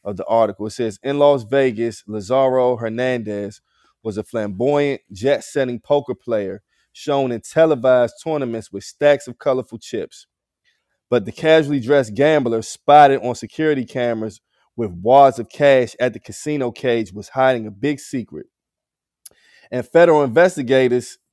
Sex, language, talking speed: male, English, 145 wpm